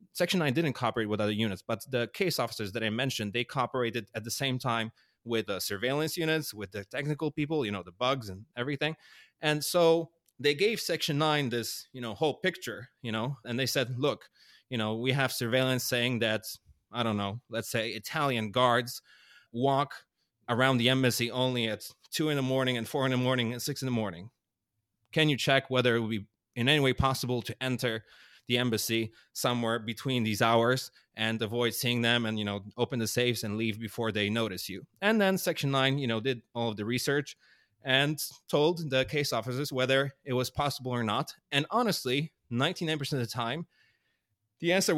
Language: English